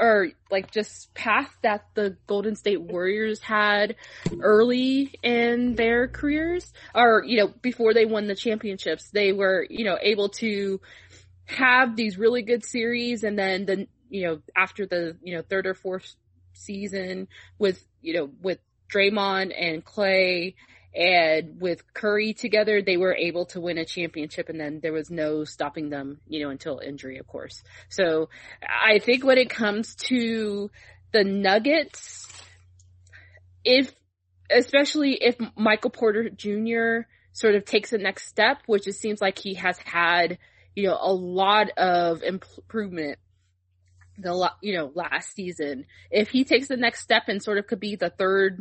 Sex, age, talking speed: female, 20-39, 160 wpm